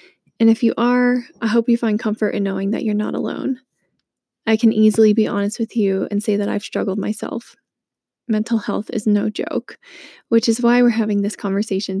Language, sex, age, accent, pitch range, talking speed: English, female, 20-39, American, 205-230 Hz, 200 wpm